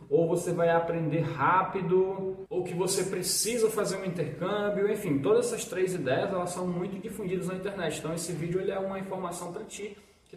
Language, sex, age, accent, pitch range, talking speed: Portuguese, male, 20-39, Brazilian, 145-180 Hz, 180 wpm